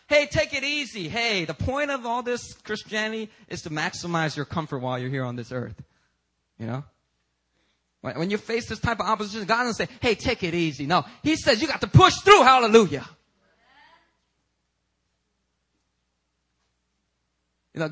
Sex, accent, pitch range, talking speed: male, American, 140-235 Hz, 165 wpm